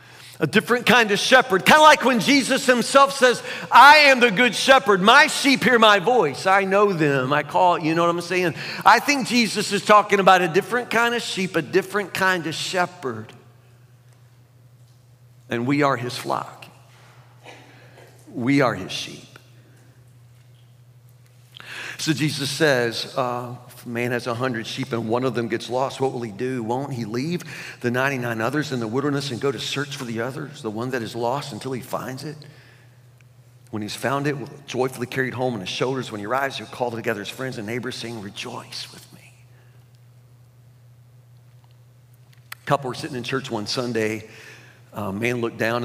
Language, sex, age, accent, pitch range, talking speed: English, male, 50-69, American, 120-140 Hz, 180 wpm